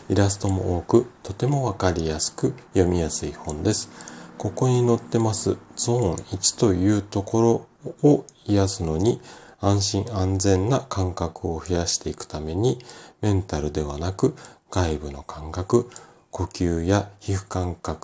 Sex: male